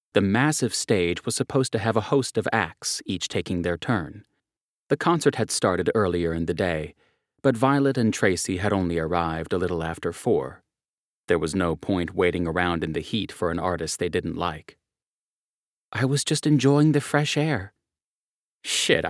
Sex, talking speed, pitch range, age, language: male, 180 wpm, 90-140 Hz, 30-49, English